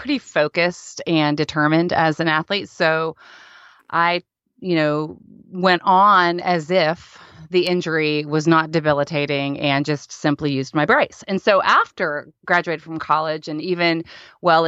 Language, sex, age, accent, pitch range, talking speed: English, female, 30-49, American, 155-190 Hz, 145 wpm